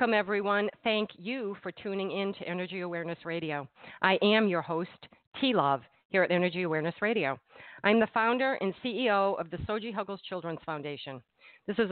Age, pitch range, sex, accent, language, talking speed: 50-69, 160-200 Hz, female, American, English, 170 wpm